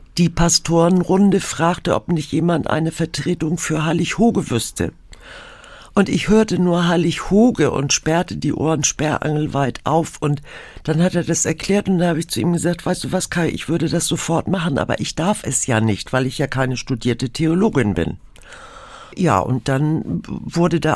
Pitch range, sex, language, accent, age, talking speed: 135-180 Hz, female, German, German, 60-79, 180 wpm